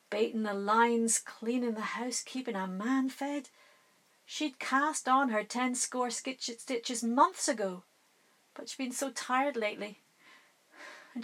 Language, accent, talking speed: English, British, 145 wpm